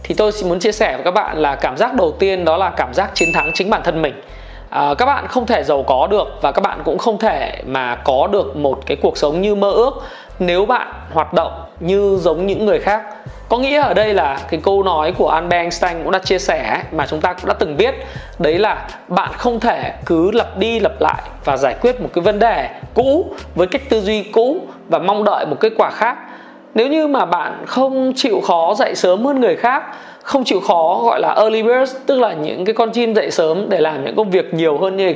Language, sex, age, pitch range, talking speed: Vietnamese, male, 20-39, 185-240 Hz, 240 wpm